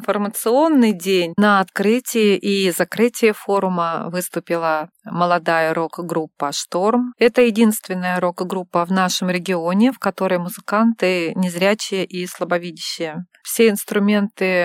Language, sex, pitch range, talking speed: Russian, female, 170-205 Hz, 100 wpm